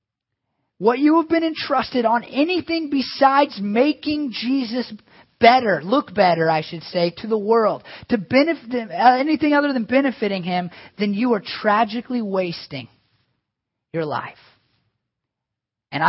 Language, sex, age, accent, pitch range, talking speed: English, male, 30-49, American, 135-190 Hz, 125 wpm